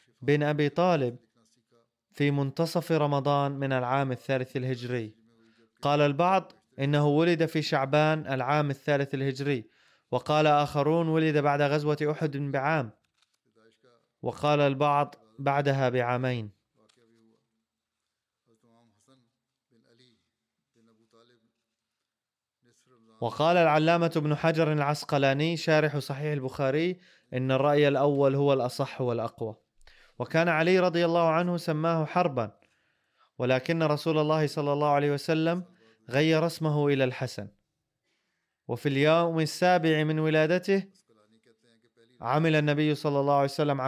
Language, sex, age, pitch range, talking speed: Arabic, male, 20-39, 125-160 Hz, 100 wpm